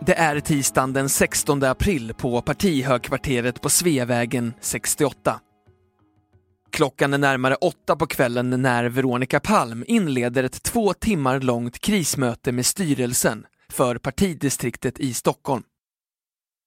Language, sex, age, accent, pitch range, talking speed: Swedish, male, 20-39, native, 125-155 Hz, 115 wpm